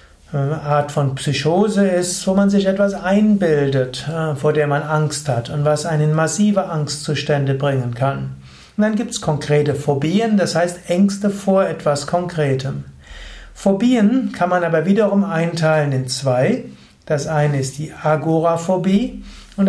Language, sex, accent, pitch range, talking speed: German, male, German, 145-195 Hz, 145 wpm